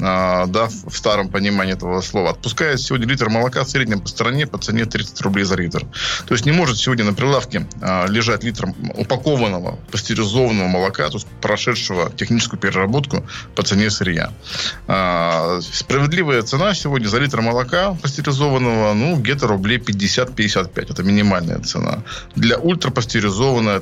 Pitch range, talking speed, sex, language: 95-125 Hz, 135 wpm, male, Russian